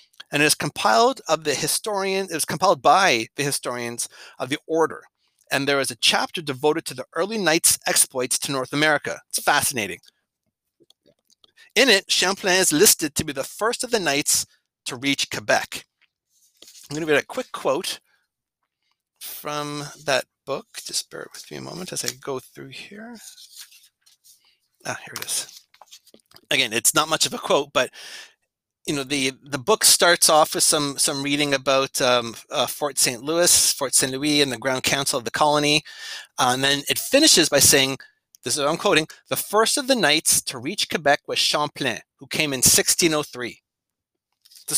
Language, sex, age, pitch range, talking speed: English, male, 30-49, 140-195 Hz, 180 wpm